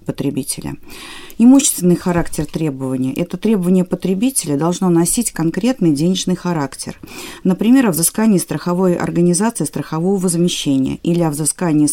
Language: Russian